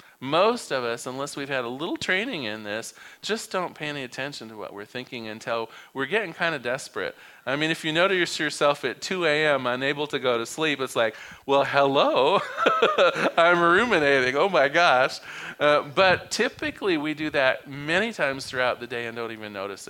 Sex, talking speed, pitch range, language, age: male, 195 wpm, 130-165 Hz, English, 40-59